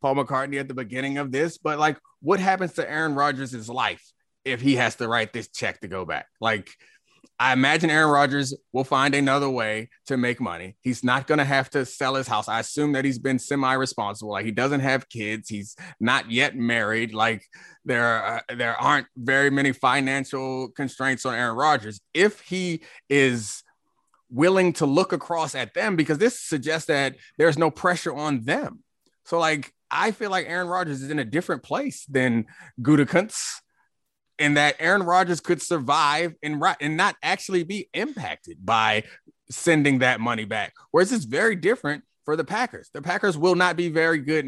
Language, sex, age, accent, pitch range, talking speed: English, male, 30-49, American, 125-165 Hz, 185 wpm